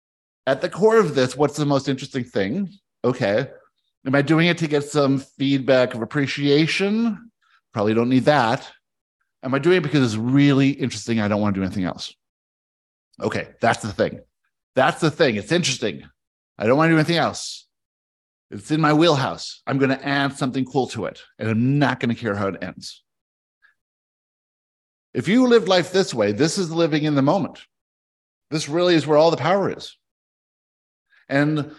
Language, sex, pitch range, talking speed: English, male, 120-160 Hz, 185 wpm